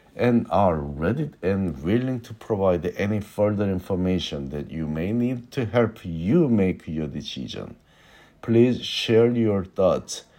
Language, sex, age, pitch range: Korean, male, 50-69, 85-120 Hz